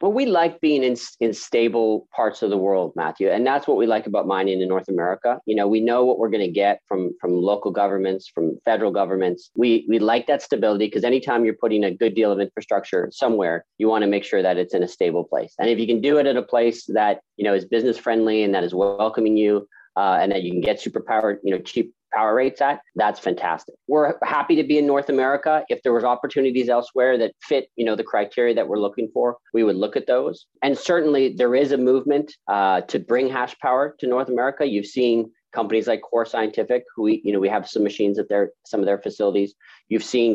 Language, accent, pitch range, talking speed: English, American, 100-125 Hz, 240 wpm